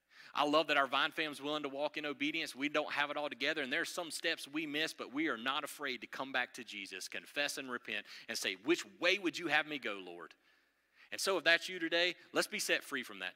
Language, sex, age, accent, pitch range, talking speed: English, male, 40-59, American, 150-240 Hz, 265 wpm